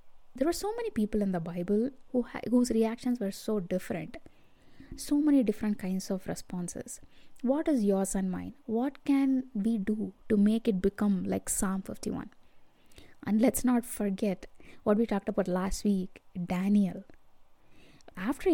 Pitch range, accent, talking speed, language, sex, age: 195-235 Hz, Indian, 160 wpm, English, female, 20-39